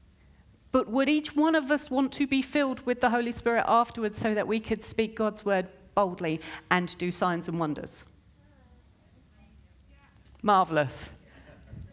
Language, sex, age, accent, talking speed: English, female, 40-59, British, 145 wpm